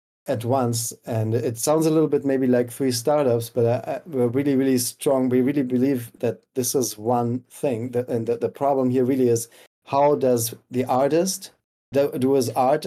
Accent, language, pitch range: German, English, 115-125 Hz